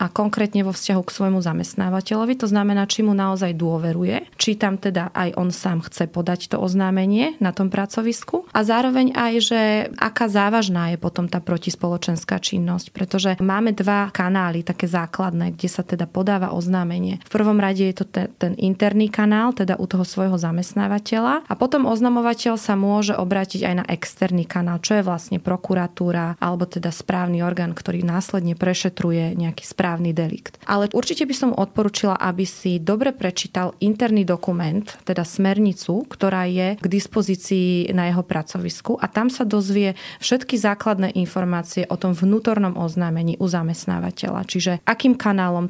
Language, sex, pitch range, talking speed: Slovak, female, 180-210 Hz, 160 wpm